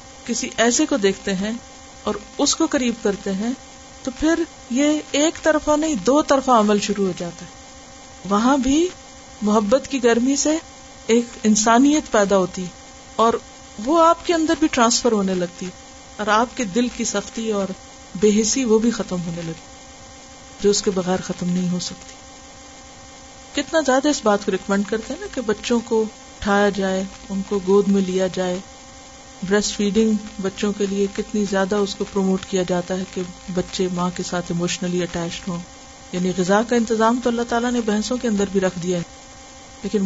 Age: 50-69